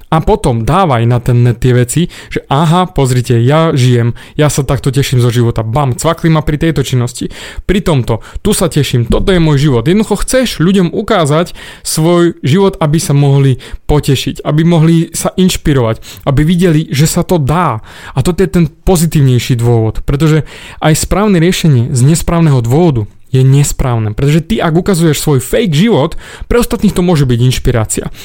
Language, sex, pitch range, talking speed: Slovak, male, 130-170 Hz, 175 wpm